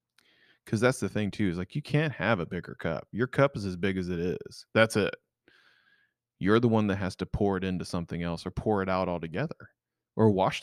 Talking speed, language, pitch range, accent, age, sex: 230 wpm, English, 95-120 Hz, American, 30-49, male